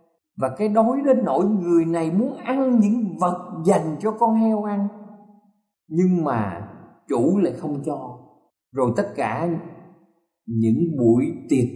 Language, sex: Thai, male